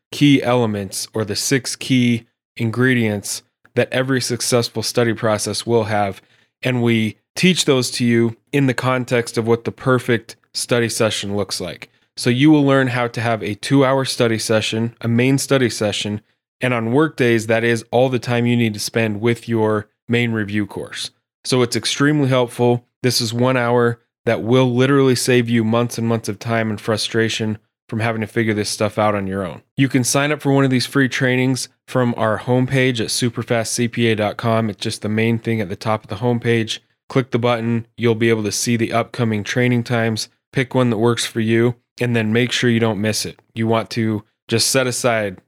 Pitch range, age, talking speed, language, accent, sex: 110-125 Hz, 20-39, 200 wpm, English, American, male